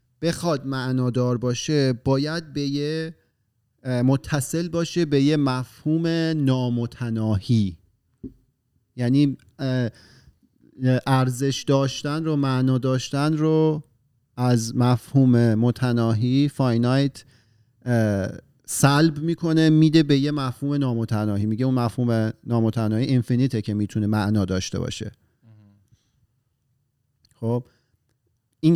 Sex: male